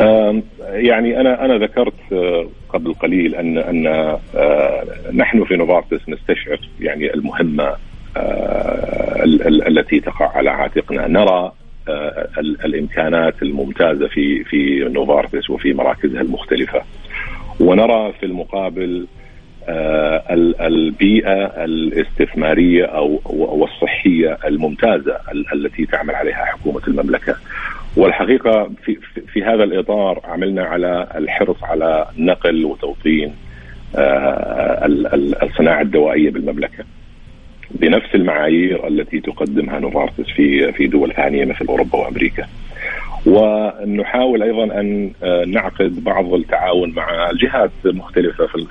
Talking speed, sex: 95 wpm, male